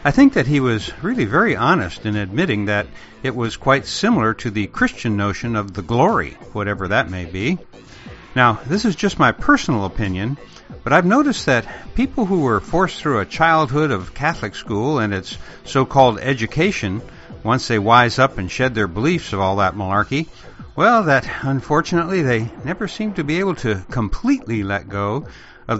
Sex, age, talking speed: male, 60-79, 180 wpm